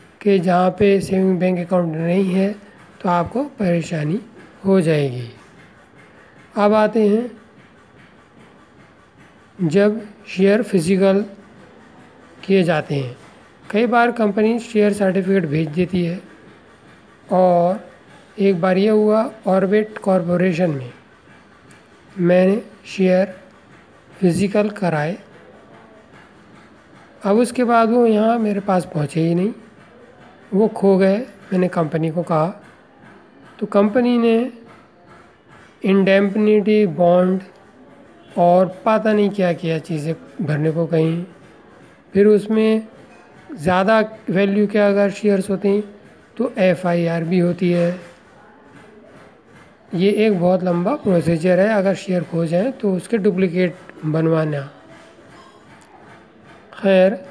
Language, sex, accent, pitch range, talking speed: Hindi, male, native, 175-210 Hz, 105 wpm